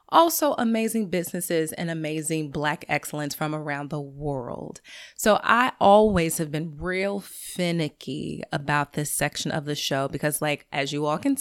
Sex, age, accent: female, 20-39, American